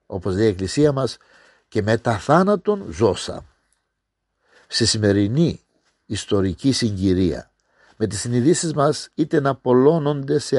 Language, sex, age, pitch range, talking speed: Greek, male, 50-69, 100-145 Hz, 125 wpm